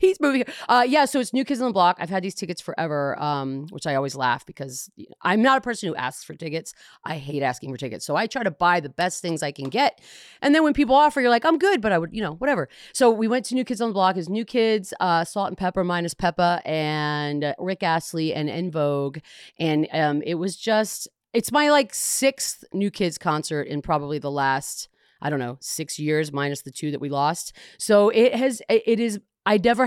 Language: English